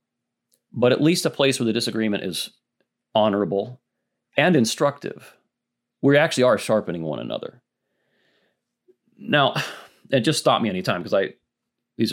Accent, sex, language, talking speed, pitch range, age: American, male, English, 135 wpm, 105-150 Hz, 40-59